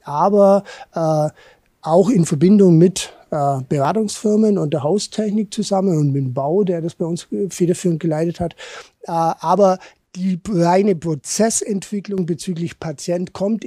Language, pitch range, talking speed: German, 155-190 Hz, 135 wpm